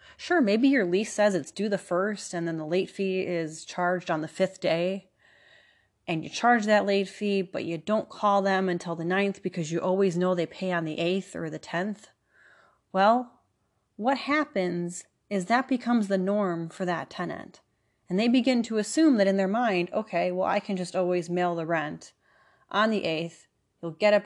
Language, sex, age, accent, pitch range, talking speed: English, female, 30-49, American, 170-215 Hz, 200 wpm